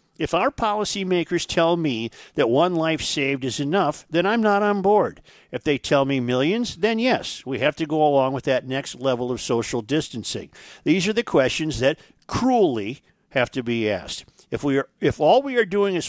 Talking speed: 195 wpm